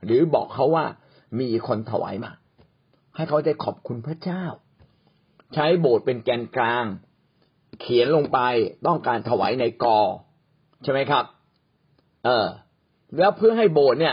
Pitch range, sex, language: 120-175 Hz, male, Thai